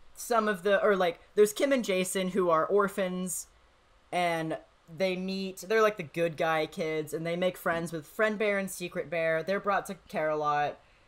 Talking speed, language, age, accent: 200 wpm, English, 10-29, American